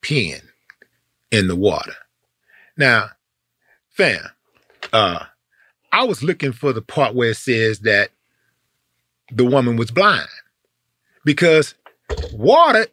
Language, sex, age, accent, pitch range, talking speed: English, male, 40-59, American, 140-205 Hz, 105 wpm